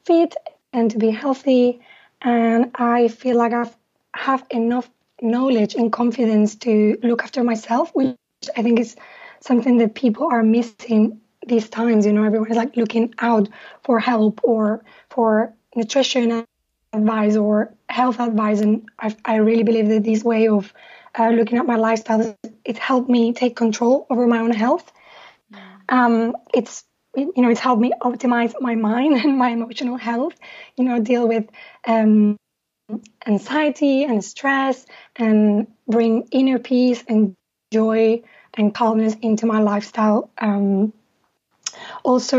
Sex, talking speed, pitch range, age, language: female, 145 wpm, 225-250 Hz, 20-39, English